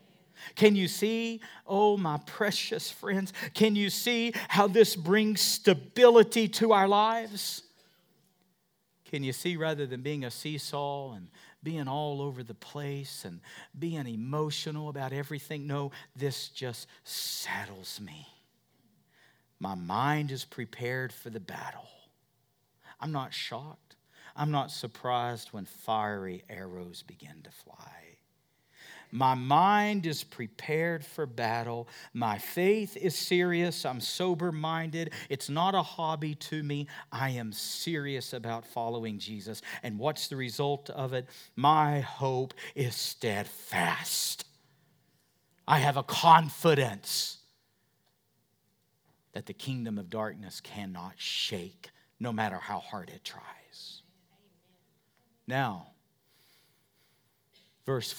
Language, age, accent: English, 50-69, American